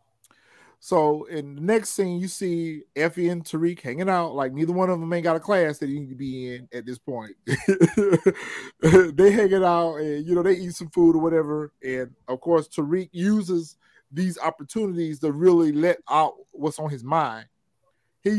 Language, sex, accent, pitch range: English, male, American, 135-170 Hz